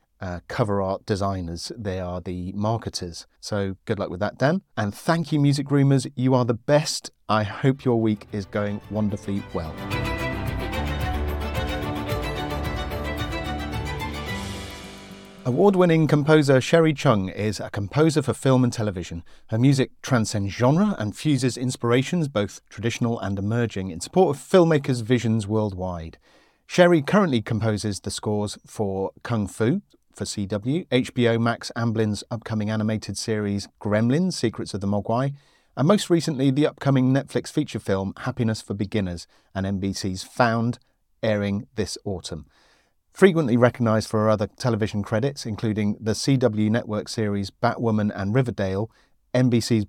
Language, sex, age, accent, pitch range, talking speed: English, male, 40-59, British, 100-125 Hz, 135 wpm